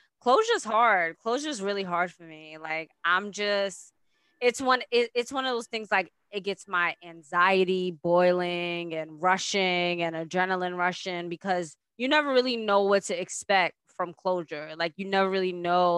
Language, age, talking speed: English, 20-39, 165 wpm